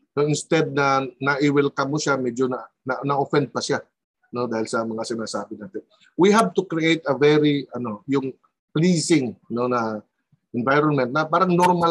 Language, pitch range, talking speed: Filipino, 140-195 Hz, 180 wpm